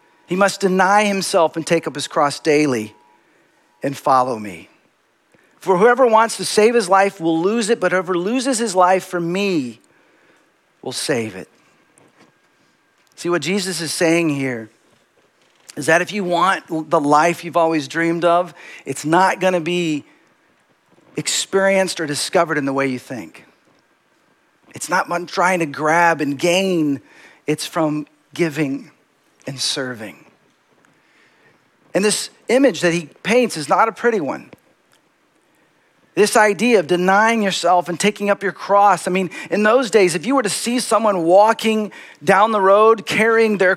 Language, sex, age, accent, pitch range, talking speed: English, male, 40-59, American, 160-205 Hz, 155 wpm